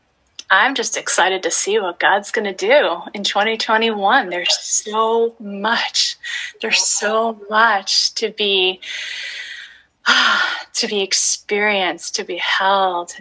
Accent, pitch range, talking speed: American, 185-230 Hz, 120 wpm